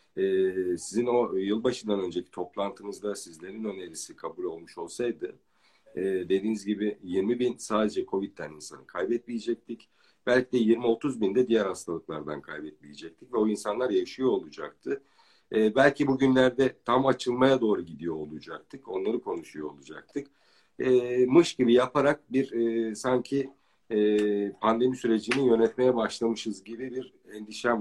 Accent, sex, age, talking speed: native, male, 50-69, 125 wpm